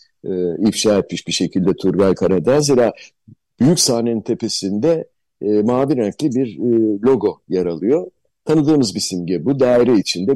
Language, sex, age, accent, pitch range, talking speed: Turkish, male, 50-69, native, 100-135 Hz, 145 wpm